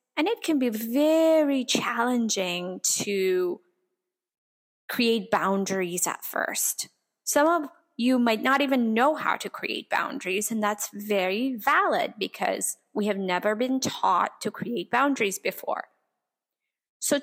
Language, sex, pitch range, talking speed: English, female, 205-290 Hz, 130 wpm